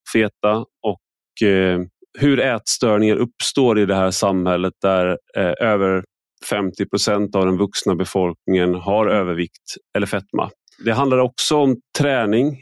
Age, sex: 30-49, male